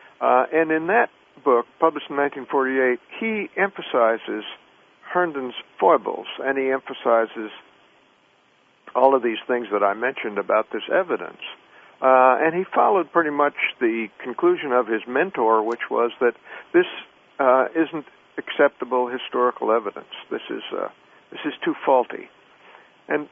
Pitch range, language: 120-160 Hz, English